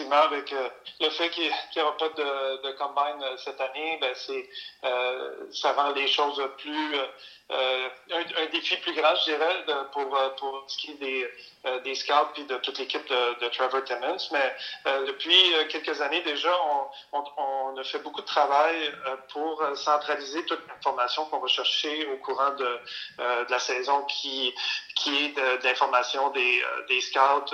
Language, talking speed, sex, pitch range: French, 185 wpm, male, 130-155 Hz